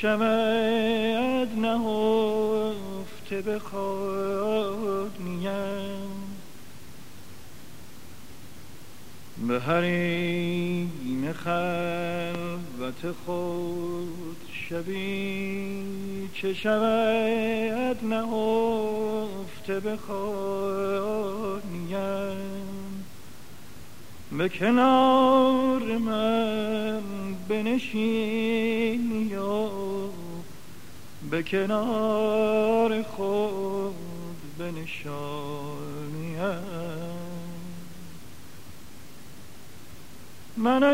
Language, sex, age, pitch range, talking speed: Persian, male, 50-69, 190-230 Hz, 45 wpm